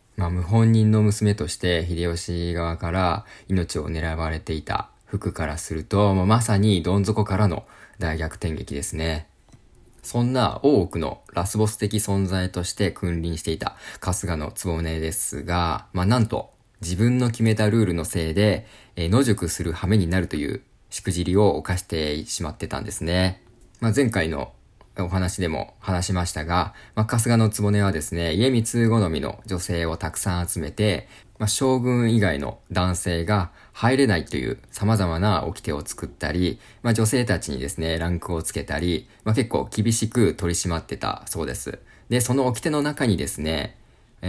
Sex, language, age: male, Japanese, 20-39